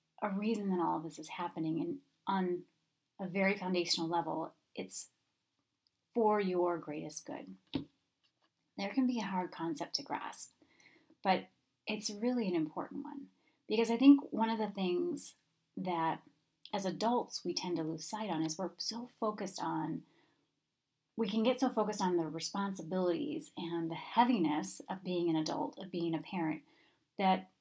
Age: 30-49